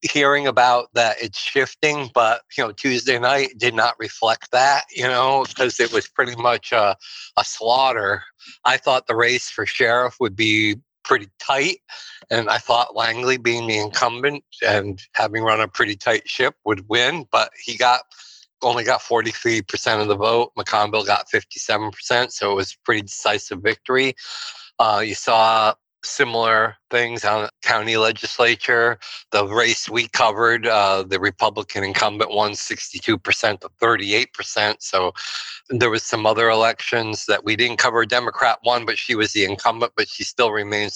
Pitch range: 105-125 Hz